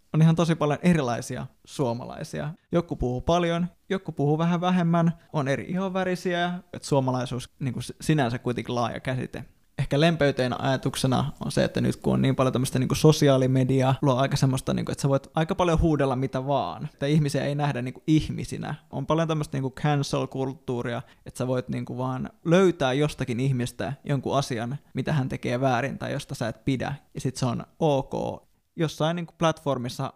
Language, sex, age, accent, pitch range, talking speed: Finnish, male, 20-39, native, 130-155 Hz, 180 wpm